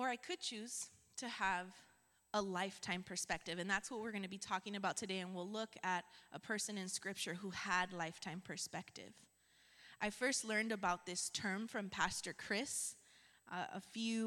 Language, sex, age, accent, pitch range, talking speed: English, female, 20-39, American, 190-240 Hz, 180 wpm